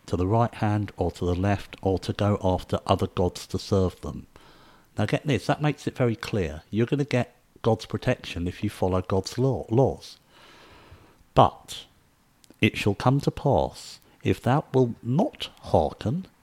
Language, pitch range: English, 90-120 Hz